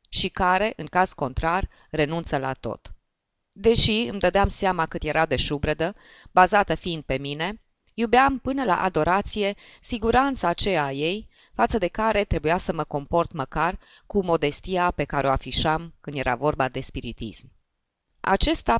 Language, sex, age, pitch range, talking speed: Romanian, female, 20-39, 150-215 Hz, 155 wpm